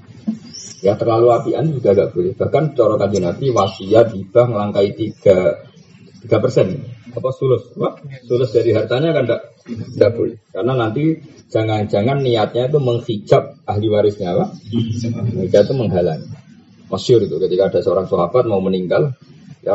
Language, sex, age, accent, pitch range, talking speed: Indonesian, male, 20-39, native, 110-140 Hz, 145 wpm